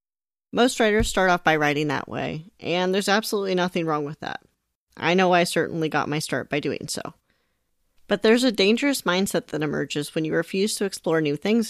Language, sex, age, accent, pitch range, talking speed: English, female, 40-59, American, 155-205 Hz, 200 wpm